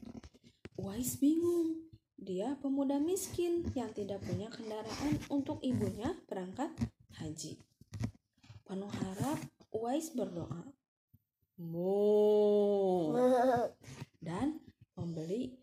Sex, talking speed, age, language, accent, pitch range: female, 75 wpm, 20-39, Indonesian, native, 165-265 Hz